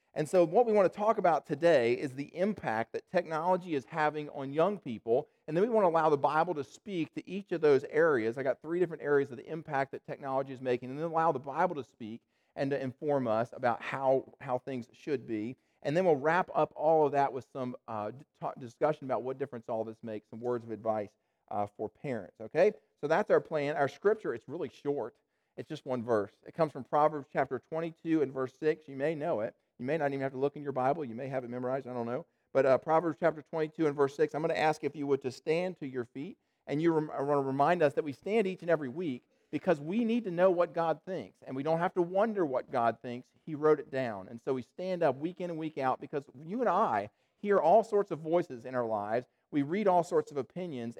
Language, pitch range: English, 130-170 Hz